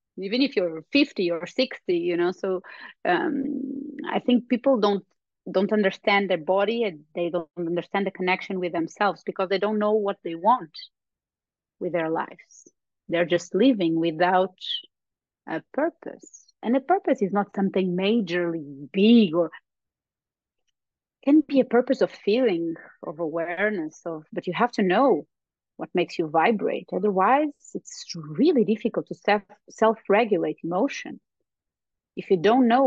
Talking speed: 145 wpm